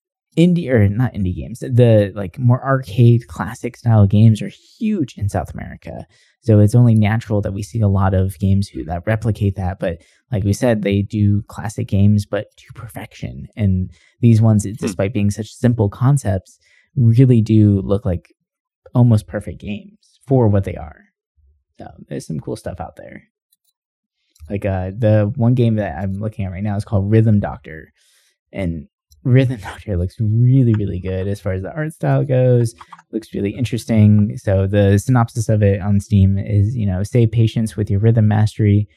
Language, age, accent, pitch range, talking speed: English, 20-39, American, 100-125 Hz, 180 wpm